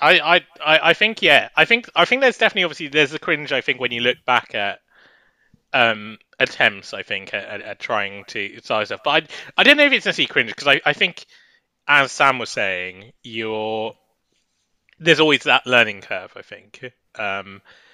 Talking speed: 200 wpm